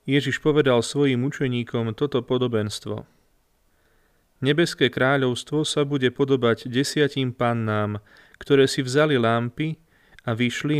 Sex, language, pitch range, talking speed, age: male, Slovak, 115-140 Hz, 105 wpm, 30-49